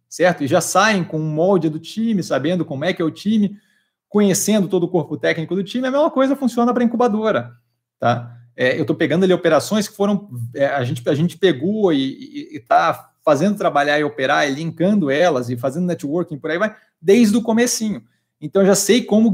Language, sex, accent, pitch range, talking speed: Portuguese, male, Brazilian, 155-215 Hz, 210 wpm